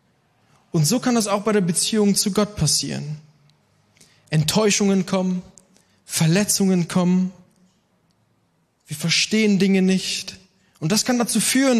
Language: German